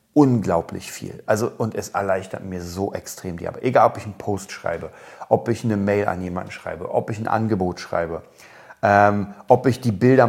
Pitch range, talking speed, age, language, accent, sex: 100-120 Hz, 200 wpm, 40-59, German, German, male